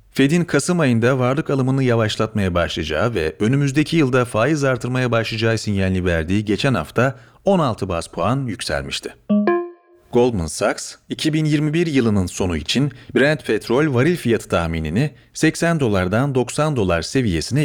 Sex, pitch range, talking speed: male, 95-140 Hz, 125 wpm